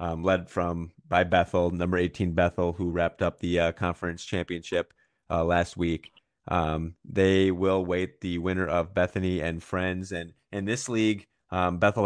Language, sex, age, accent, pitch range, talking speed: English, male, 30-49, American, 85-95 Hz, 170 wpm